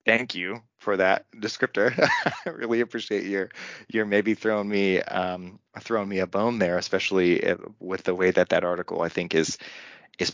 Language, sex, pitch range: English, male, 90-110 Hz